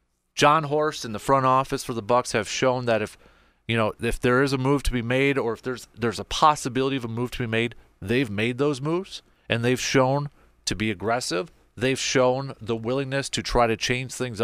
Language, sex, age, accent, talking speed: English, male, 30-49, American, 225 wpm